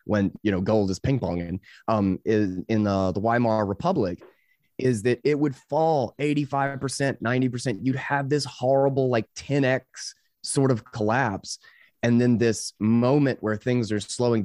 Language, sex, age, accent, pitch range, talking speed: English, male, 20-39, American, 105-130 Hz, 155 wpm